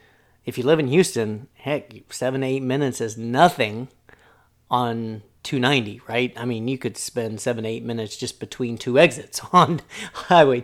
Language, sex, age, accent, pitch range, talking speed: English, male, 40-59, American, 115-145 Hz, 160 wpm